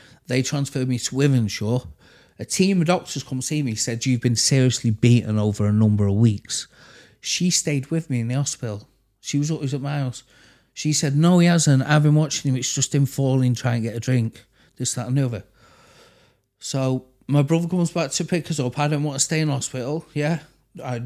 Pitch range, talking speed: 120-150 Hz, 220 wpm